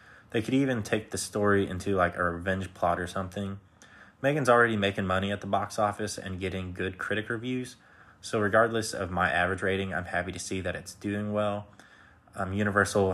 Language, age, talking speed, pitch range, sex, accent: English, 20-39, 190 wpm, 95-110 Hz, male, American